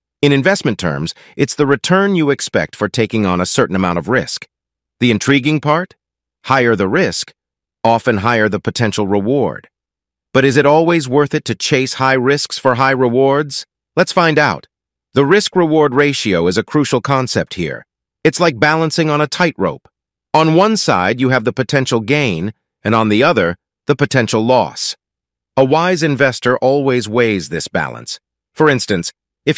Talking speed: 165 wpm